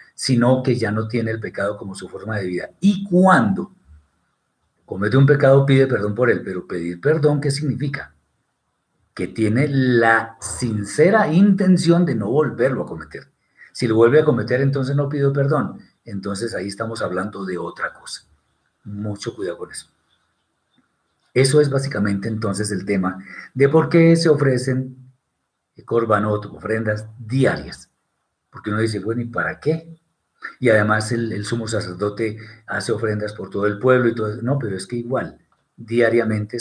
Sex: male